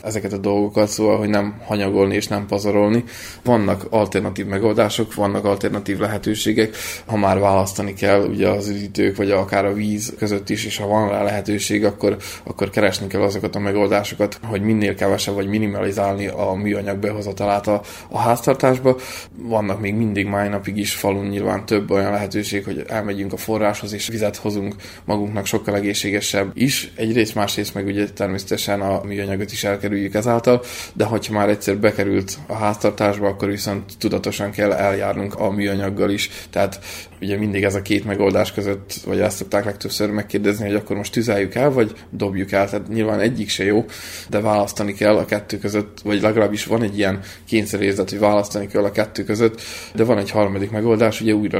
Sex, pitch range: male, 100-105 Hz